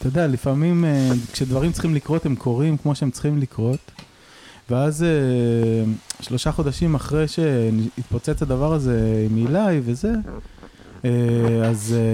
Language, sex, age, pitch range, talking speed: Hebrew, male, 20-39, 115-145 Hz, 115 wpm